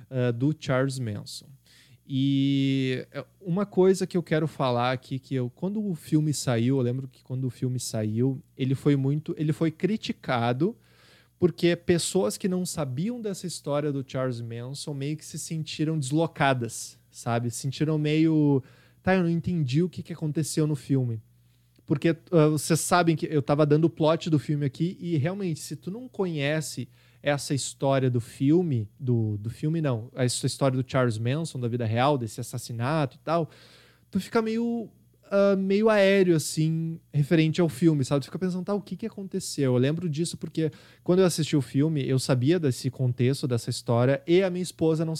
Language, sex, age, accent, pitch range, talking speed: Portuguese, male, 20-39, Brazilian, 130-175 Hz, 180 wpm